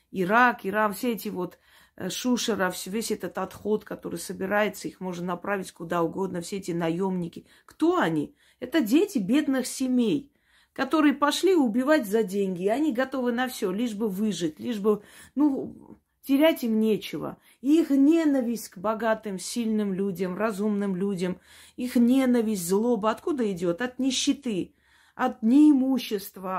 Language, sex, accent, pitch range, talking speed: Russian, female, native, 195-260 Hz, 140 wpm